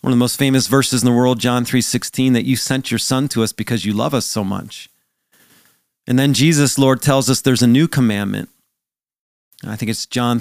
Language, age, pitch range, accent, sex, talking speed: English, 40-59, 115-130 Hz, American, male, 225 wpm